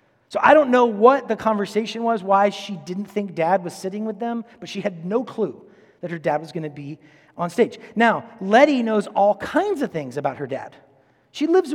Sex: male